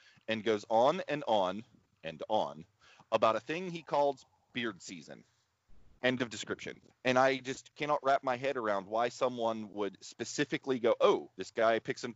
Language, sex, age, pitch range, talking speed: English, male, 30-49, 105-135 Hz, 175 wpm